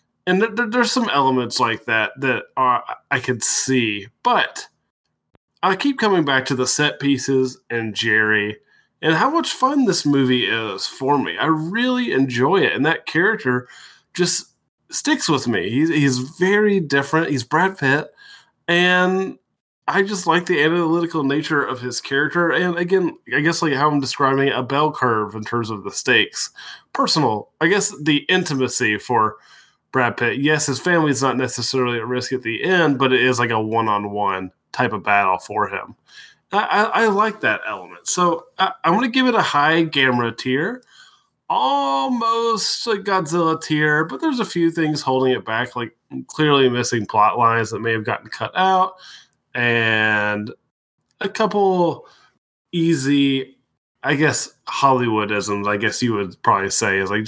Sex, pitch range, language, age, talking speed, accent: male, 120-180 Hz, English, 20-39, 170 wpm, American